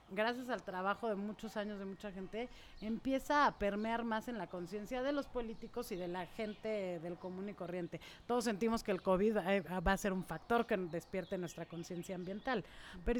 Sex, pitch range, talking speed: female, 190-235 Hz, 195 wpm